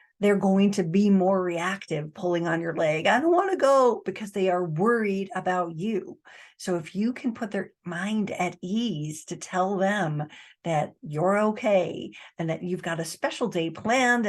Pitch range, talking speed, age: 165-205 Hz, 185 wpm, 50-69